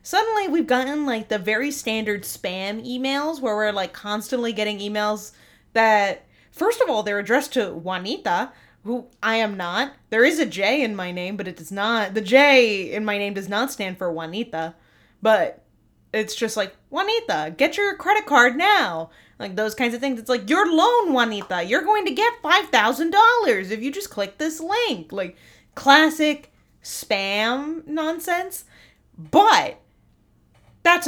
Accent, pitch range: American, 210-315 Hz